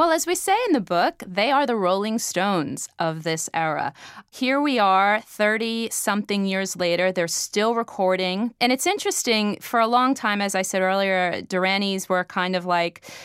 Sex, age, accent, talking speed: female, 30-49, American, 180 wpm